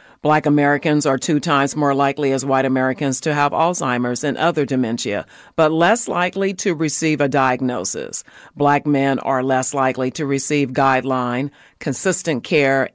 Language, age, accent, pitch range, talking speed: English, 40-59, American, 130-155 Hz, 155 wpm